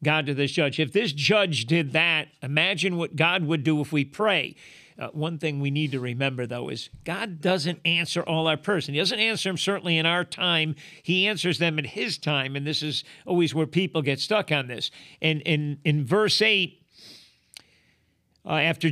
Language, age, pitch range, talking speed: English, 50-69, 150-185 Hz, 195 wpm